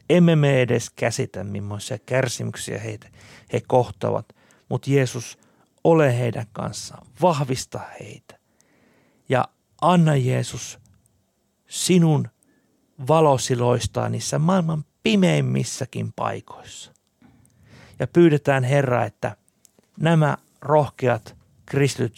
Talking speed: 85 wpm